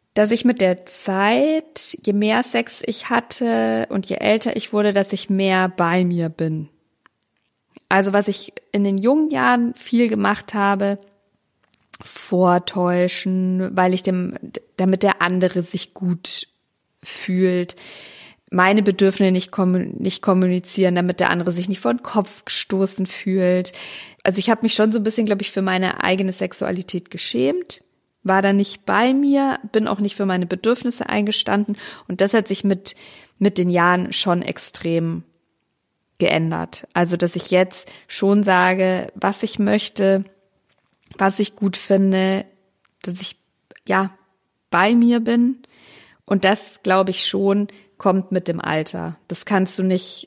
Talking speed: 150 wpm